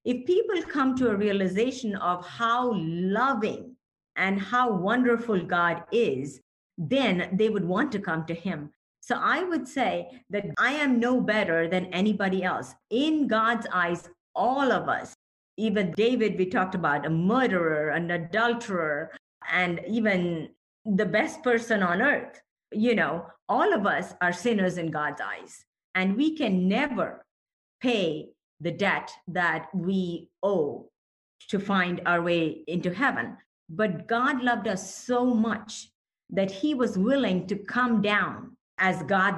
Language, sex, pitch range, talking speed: English, female, 180-240 Hz, 150 wpm